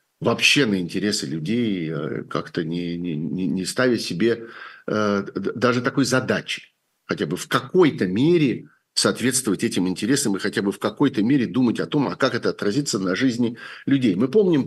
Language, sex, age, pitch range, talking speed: Russian, male, 50-69, 85-115 Hz, 165 wpm